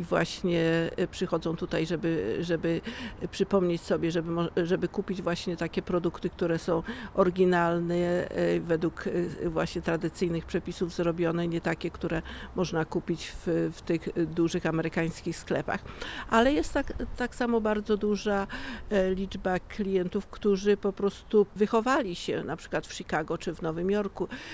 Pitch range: 175-205 Hz